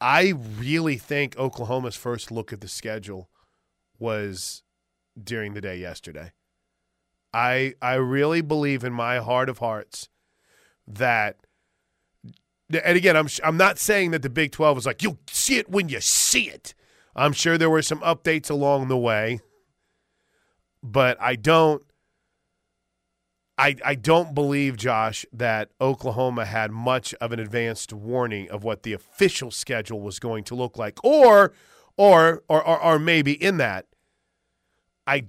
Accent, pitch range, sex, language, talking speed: American, 115-155 Hz, male, English, 150 wpm